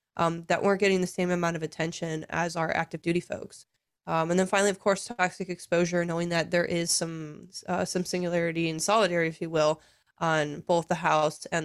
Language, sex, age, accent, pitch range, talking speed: English, female, 20-39, American, 165-190 Hz, 205 wpm